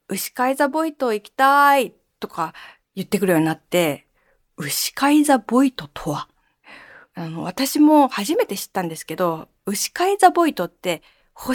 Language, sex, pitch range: Japanese, female, 175-270 Hz